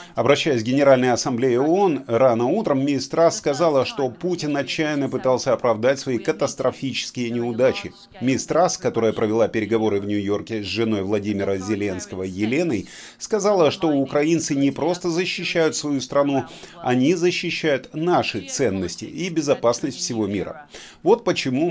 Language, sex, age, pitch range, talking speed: Russian, male, 30-49, 110-155 Hz, 135 wpm